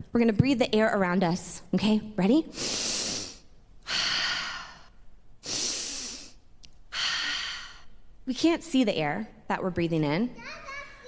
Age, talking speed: 20-39, 95 wpm